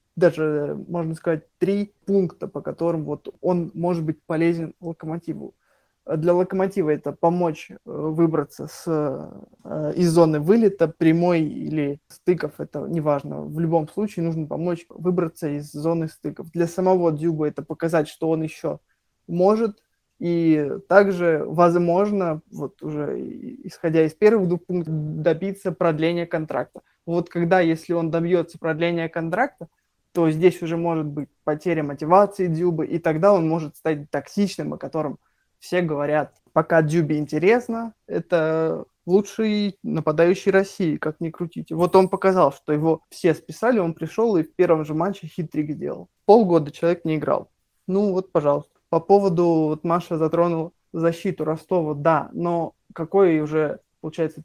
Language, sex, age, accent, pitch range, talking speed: Russian, male, 20-39, native, 155-180 Hz, 140 wpm